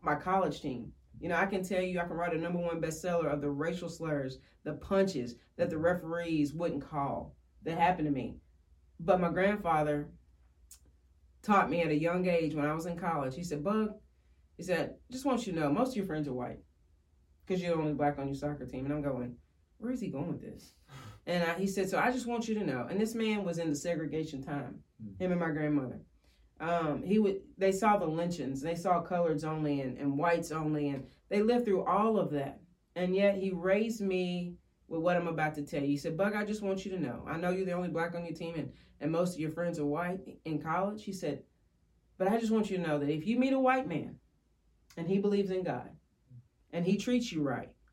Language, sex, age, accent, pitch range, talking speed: English, female, 30-49, American, 145-195 Hz, 235 wpm